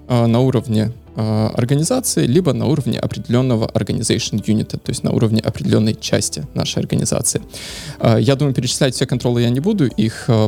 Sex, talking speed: male, 160 wpm